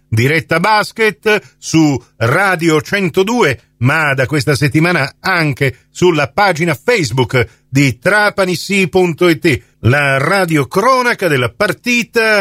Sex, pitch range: male, 130-190 Hz